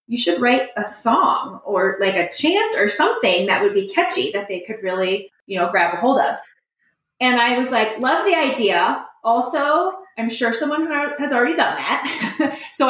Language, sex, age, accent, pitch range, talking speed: English, female, 30-49, American, 185-240 Hz, 190 wpm